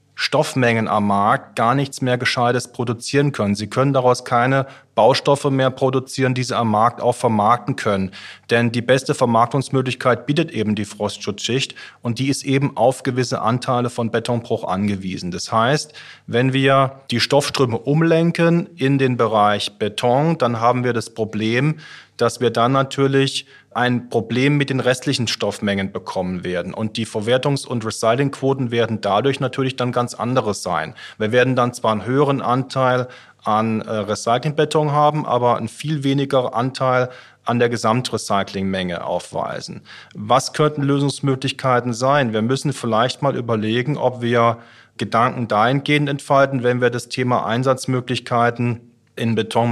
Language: German